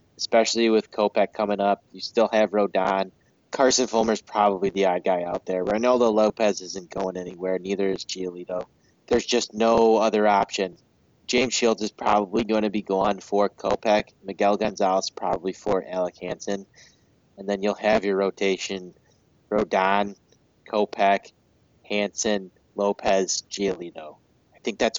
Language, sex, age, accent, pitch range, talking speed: English, male, 20-39, American, 95-110 Hz, 145 wpm